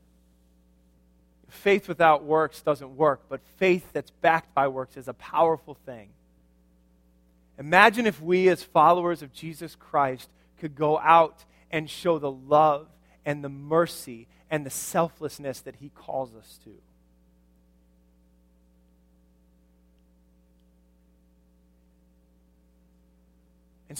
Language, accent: English, American